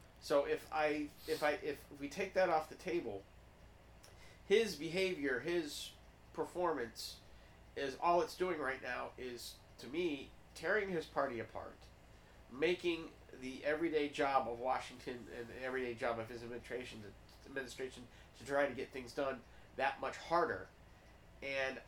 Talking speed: 150 wpm